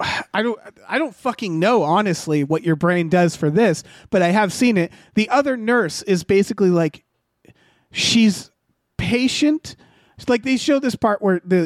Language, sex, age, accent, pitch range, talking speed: English, male, 30-49, American, 165-210 Hz, 170 wpm